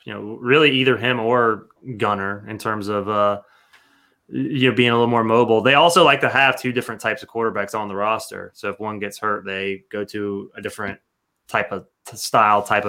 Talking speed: 210 wpm